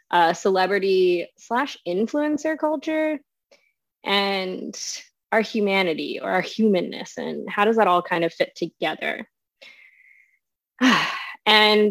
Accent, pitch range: American, 180-260 Hz